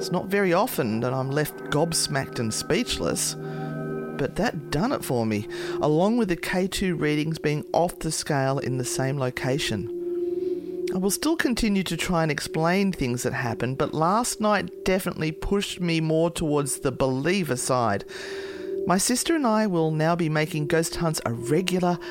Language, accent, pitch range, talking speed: English, Australian, 135-200 Hz, 170 wpm